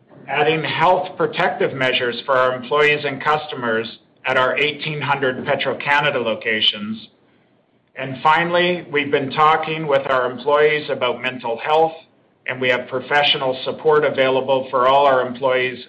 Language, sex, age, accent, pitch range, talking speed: English, male, 50-69, American, 130-155 Hz, 135 wpm